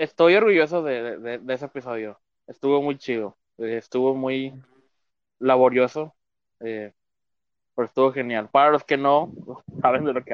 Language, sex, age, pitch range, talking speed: Spanish, male, 20-39, 120-140 Hz, 155 wpm